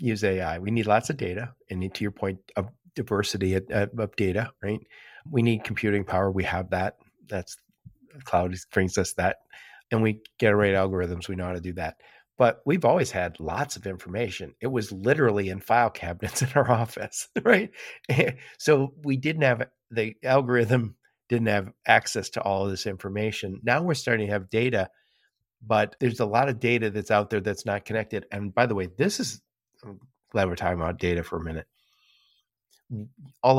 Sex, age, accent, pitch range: male, 50-69, American, 100-125 Hz